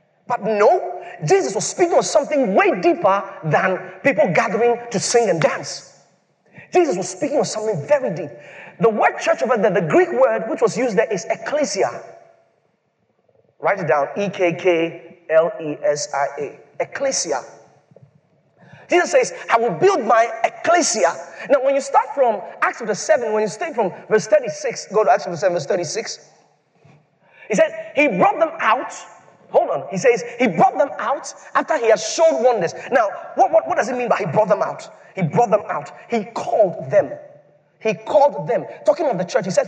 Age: 30-49